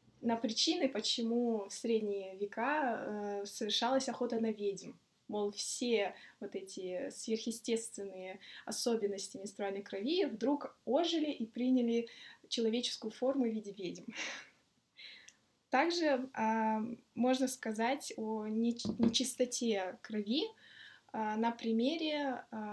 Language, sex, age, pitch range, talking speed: Russian, female, 20-39, 210-255 Hz, 100 wpm